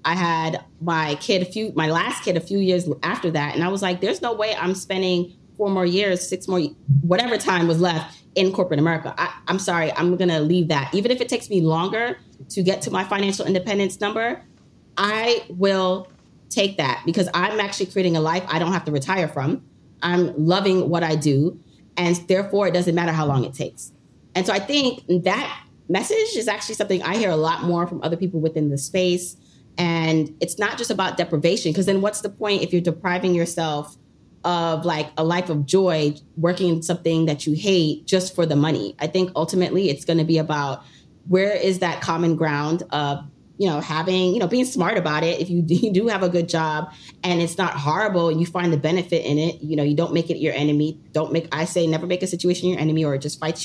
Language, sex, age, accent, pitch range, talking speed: English, female, 30-49, American, 160-190 Hz, 225 wpm